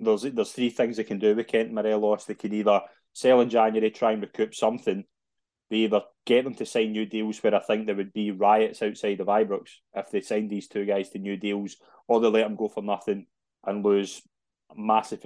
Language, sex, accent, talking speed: English, male, British, 230 wpm